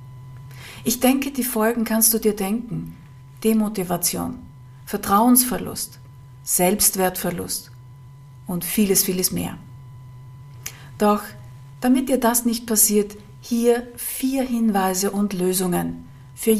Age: 50-69